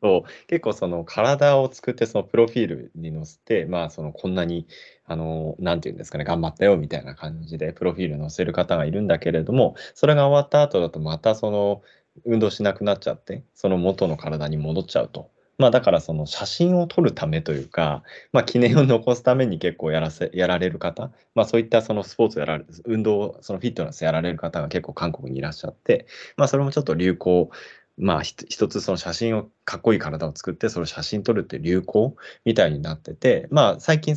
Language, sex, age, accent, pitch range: Japanese, male, 20-39, native, 80-115 Hz